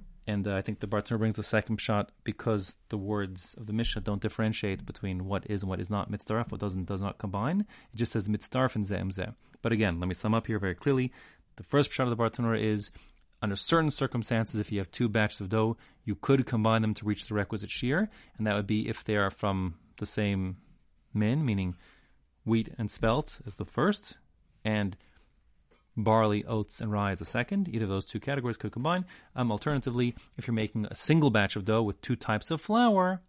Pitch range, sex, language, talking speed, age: 100-120 Hz, male, English, 220 wpm, 30-49